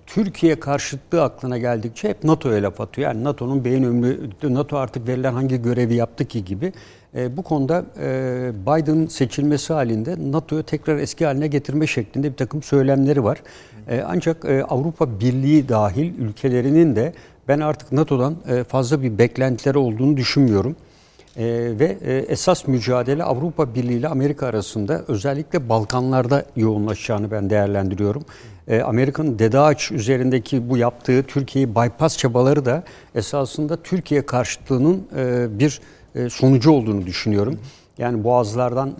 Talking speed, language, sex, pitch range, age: 135 wpm, Turkish, male, 115-145 Hz, 60-79